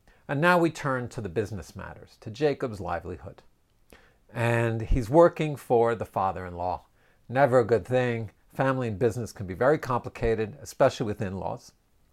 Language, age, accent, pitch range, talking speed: English, 50-69, American, 110-150 Hz, 155 wpm